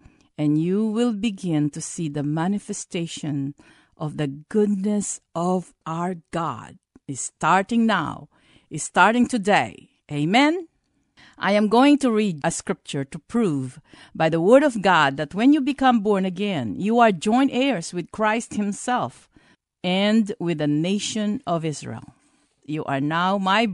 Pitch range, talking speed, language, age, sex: 160-245 Hz, 145 wpm, English, 50-69, female